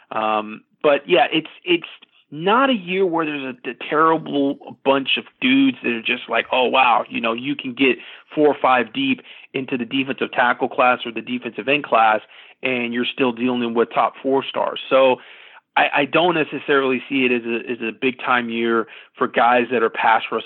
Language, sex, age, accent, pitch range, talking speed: English, male, 40-59, American, 120-140 Hz, 200 wpm